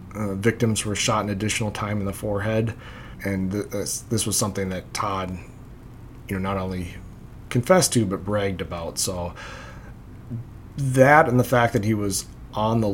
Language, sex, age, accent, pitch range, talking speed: English, male, 30-49, American, 95-115 Hz, 165 wpm